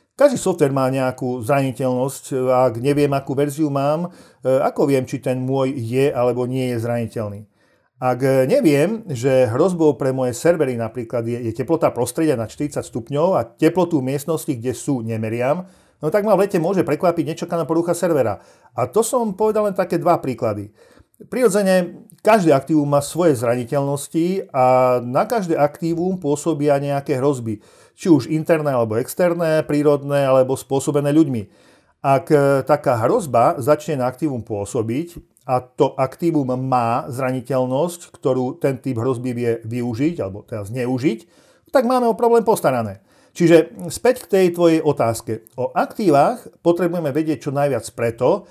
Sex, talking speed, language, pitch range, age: male, 145 wpm, Slovak, 125-165 Hz, 50-69